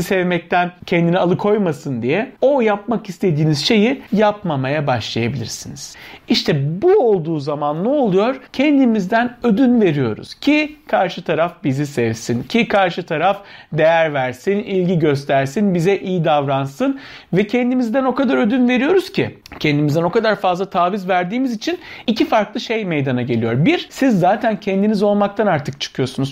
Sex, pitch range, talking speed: male, 160-230 Hz, 135 wpm